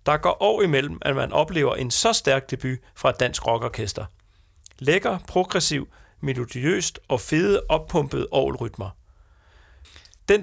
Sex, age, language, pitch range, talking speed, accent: male, 40-59, Danish, 105-155 Hz, 130 wpm, native